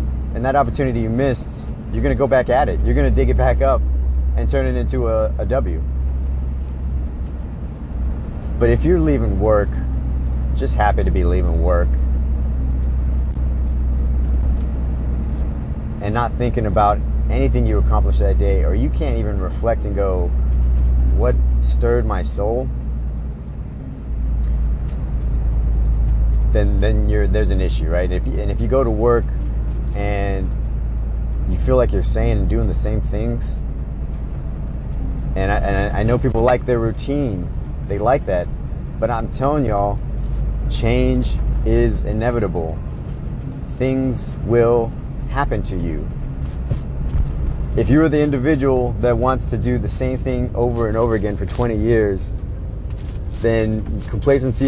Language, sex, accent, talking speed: English, male, American, 140 wpm